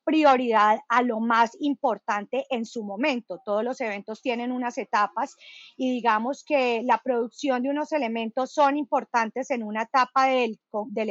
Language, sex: Spanish, female